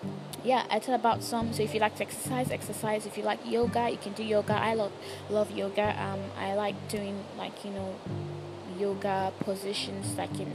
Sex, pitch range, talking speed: female, 130-205 Hz, 200 wpm